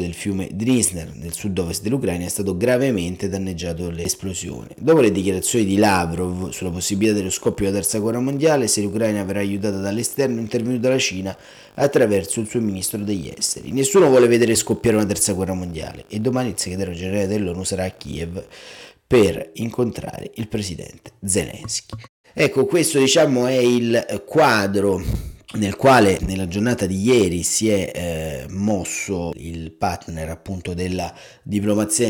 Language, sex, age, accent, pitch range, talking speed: Italian, male, 30-49, native, 90-110 Hz, 155 wpm